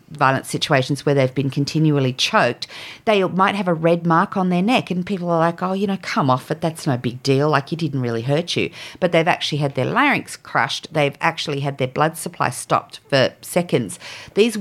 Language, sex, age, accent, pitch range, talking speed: English, female, 50-69, Australian, 140-185 Hz, 220 wpm